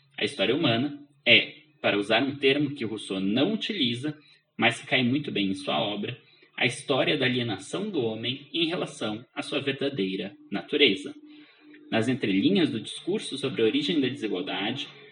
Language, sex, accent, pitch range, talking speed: Portuguese, male, Brazilian, 115-175 Hz, 165 wpm